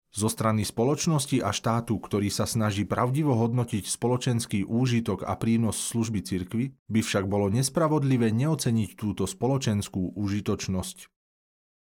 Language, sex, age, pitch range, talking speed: Slovak, male, 40-59, 100-125 Hz, 120 wpm